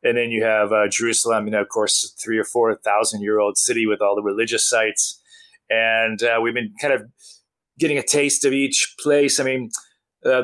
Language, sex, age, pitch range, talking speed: English, male, 30-49, 110-135 Hz, 215 wpm